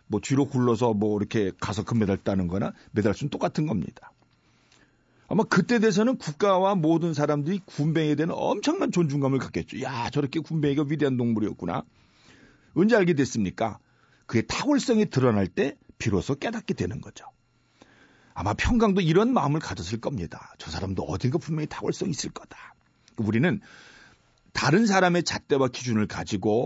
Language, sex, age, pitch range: Korean, male, 40-59, 105-170 Hz